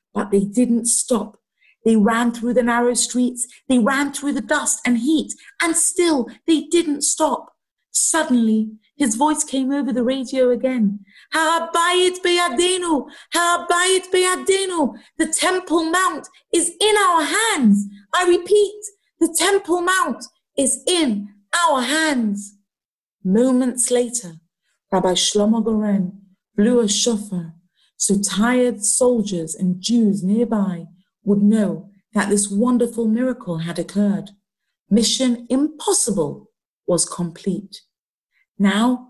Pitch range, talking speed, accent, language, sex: 205-285 Hz, 115 wpm, British, English, female